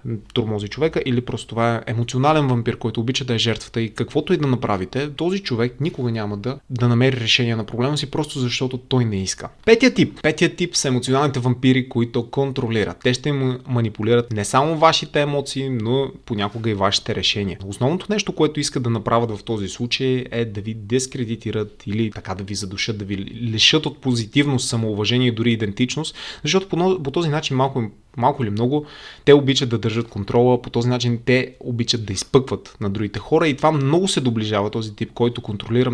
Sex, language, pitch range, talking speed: male, Bulgarian, 110-130 Hz, 195 wpm